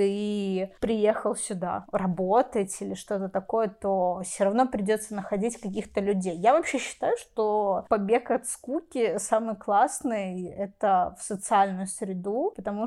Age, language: 20-39, Russian